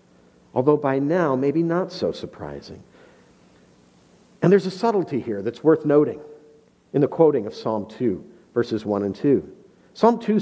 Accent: American